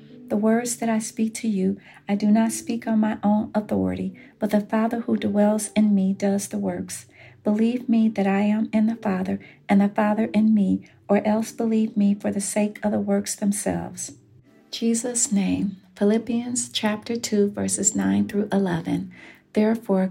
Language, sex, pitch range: English, female, 190-220 Hz